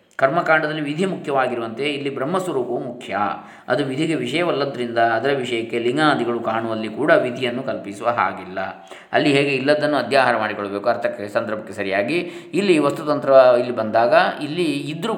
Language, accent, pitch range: Kannada, native, 115-145 Hz